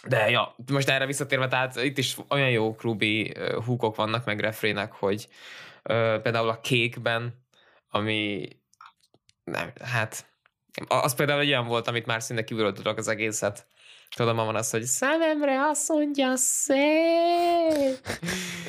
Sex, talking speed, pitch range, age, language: male, 135 wpm, 110-135 Hz, 20-39, Hungarian